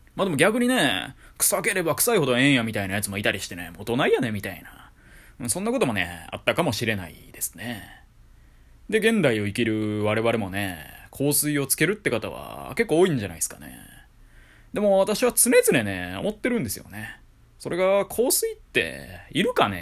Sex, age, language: male, 20-39, Japanese